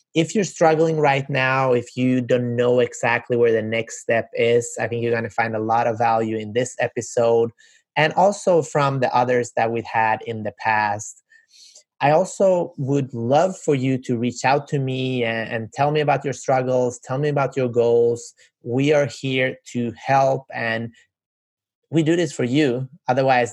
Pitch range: 120-140 Hz